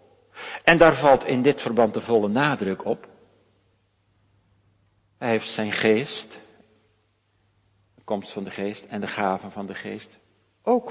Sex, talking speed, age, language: male, 145 wpm, 60-79, Dutch